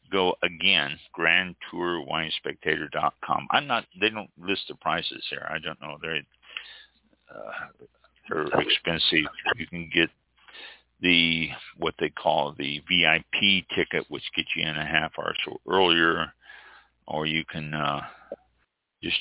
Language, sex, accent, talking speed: English, male, American, 140 wpm